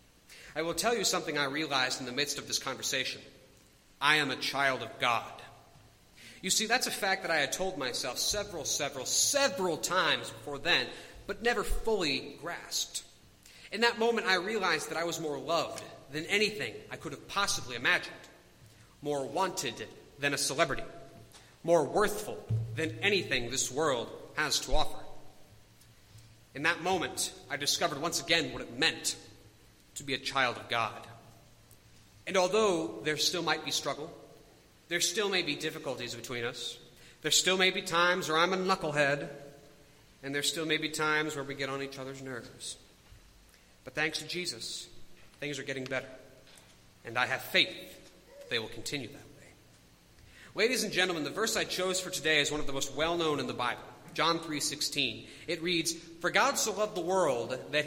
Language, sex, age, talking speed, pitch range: English, male, 40-59, 175 wpm, 130-175 Hz